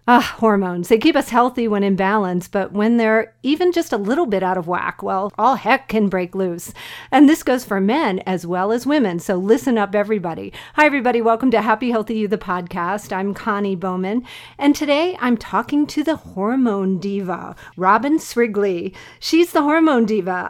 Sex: female